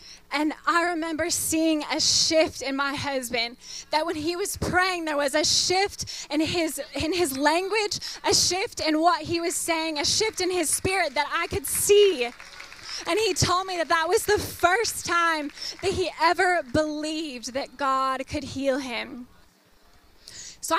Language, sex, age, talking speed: English, female, 10-29, 170 wpm